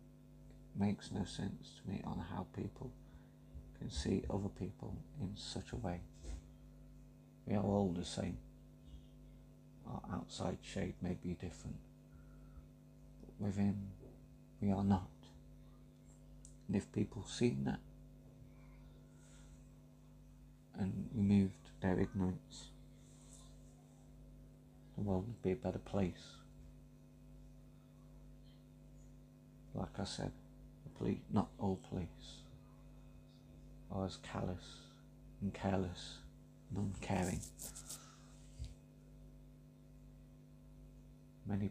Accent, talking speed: British, 90 wpm